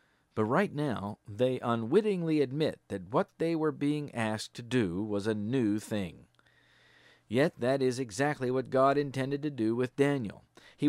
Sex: male